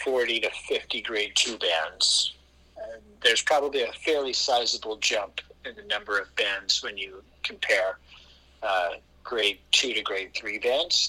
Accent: American